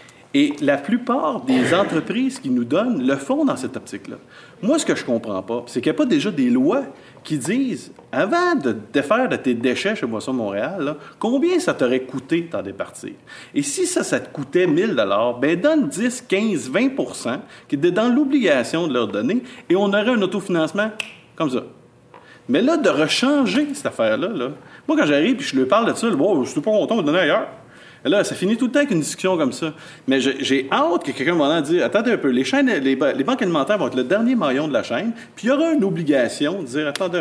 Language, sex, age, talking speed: English, male, 40-59, 245 wpm